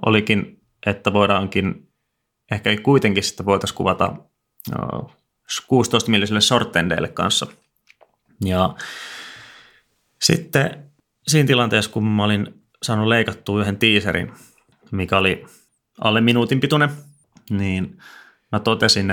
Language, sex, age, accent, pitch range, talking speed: Finnish, male, 30-49, native, 95-115 Hz, 95 wpm